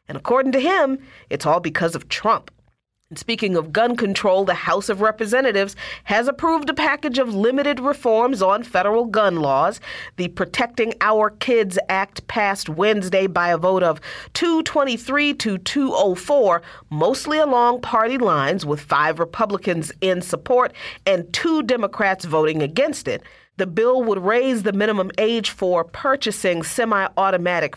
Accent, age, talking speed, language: American, 40-59, 145 wpm, English